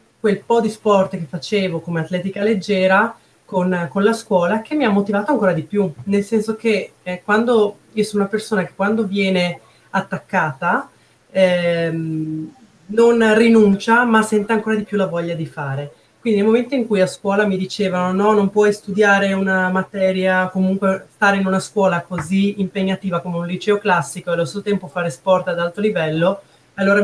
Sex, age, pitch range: female, 30-49, 175-205 Hz